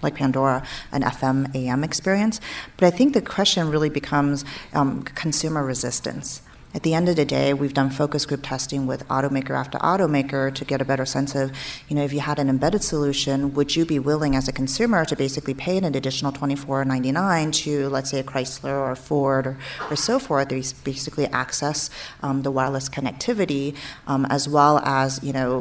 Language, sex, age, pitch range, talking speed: English, female, 40-59, 135-155 Hz, 195 wpm